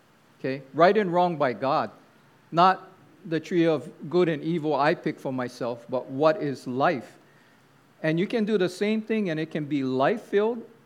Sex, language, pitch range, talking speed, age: male, English, 145-180 Hz, 180 wpm, 50-69